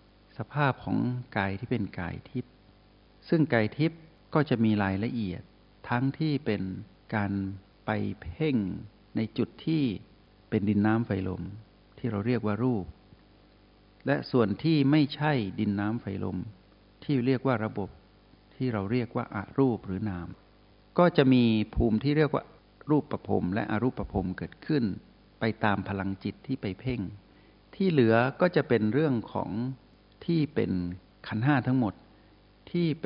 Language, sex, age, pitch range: Thai, male, 60-79, 100-125 Hz